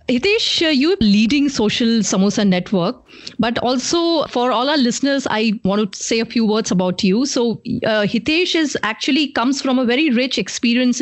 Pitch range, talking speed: 220-285 Hz, 170 wpm